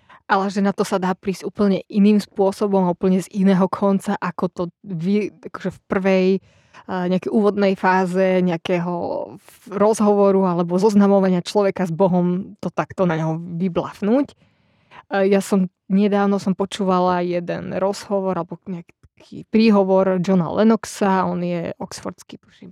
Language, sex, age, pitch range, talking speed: Slovak, female, 20-39, 185-205 Hz, 130 wpm